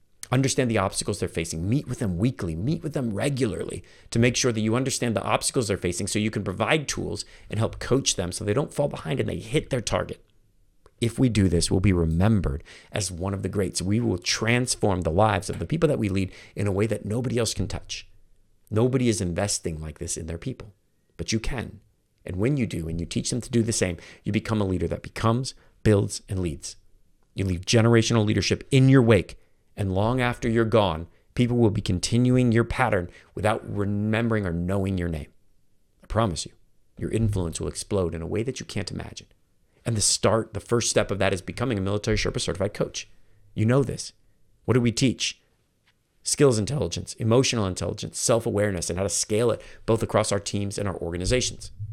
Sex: male